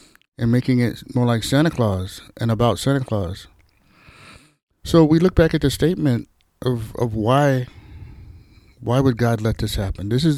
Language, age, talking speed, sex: English, 60-79, 170 wpm, male